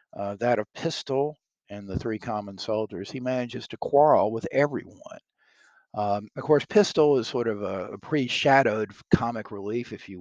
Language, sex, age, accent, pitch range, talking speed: English, male, 50-69, American, 105-130 Hz, 170 wpm